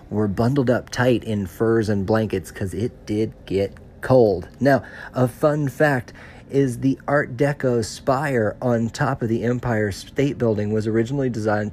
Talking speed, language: 165 wpm, English